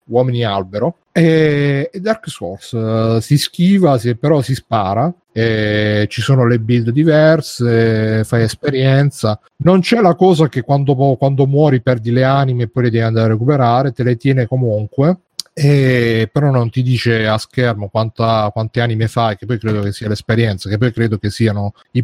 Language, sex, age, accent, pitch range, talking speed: Italian, male, 30-49, native, 115-150 Hz, 160 wpm